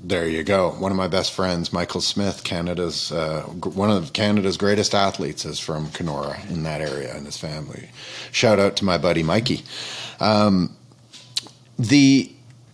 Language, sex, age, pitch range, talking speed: English, male, 30-49, 85-120 Hz, 160 wpm